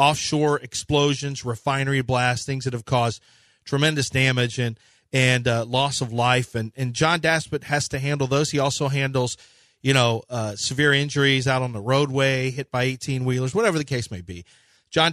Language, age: English, 40-59